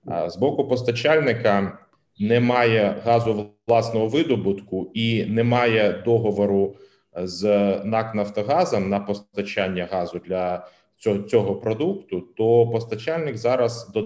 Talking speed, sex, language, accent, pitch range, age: 100 wpm, male, Ukrainian, native, 100-120 Hz, 30-49